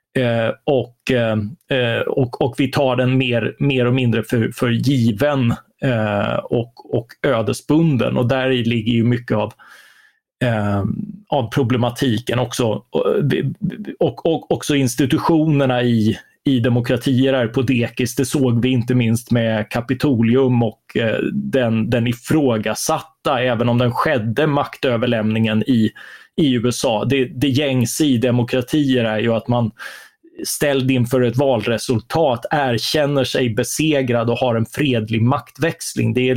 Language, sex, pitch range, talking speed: Swedish, male, 115-135 Hz, 140 wpm